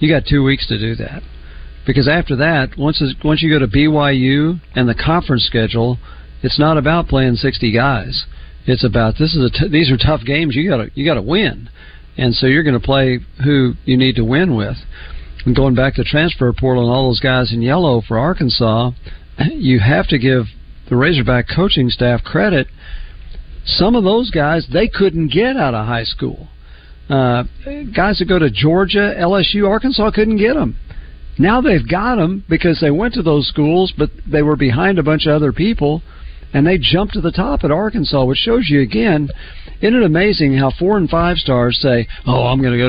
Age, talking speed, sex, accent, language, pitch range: 50-69, 200 wpm, male, American, English, 120-165 Hz